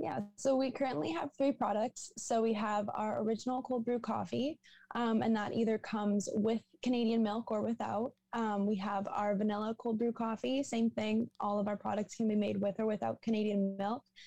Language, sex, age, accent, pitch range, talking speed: English, female, 10-29, American, 195-230 Hz, 200 wpm